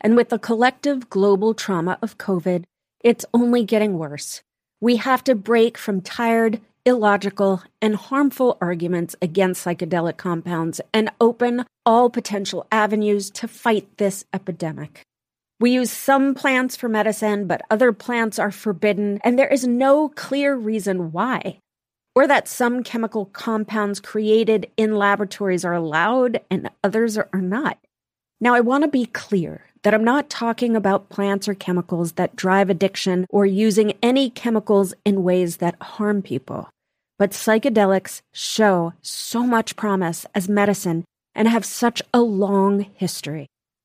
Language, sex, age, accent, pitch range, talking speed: English, female, 40-59, American, 195-245 Hz, 145 wpm